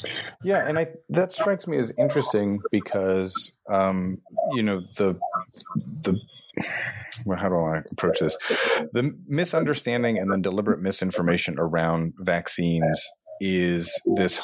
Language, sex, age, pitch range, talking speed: English, male, 30-49, 80-110 Hz, 130 wpm